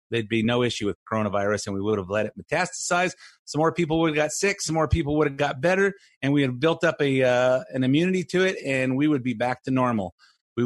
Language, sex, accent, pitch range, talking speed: English, male, American, 125-155 Hz, 260 wpm